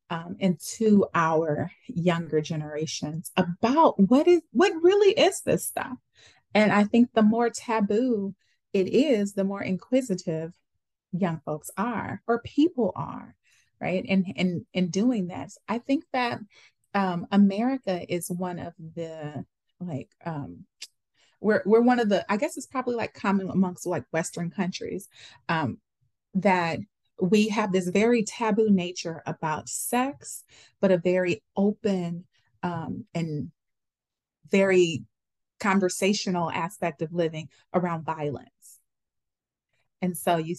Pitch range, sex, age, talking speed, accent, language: 165-210 Hz, female, 30-49, 130 wpm, American, English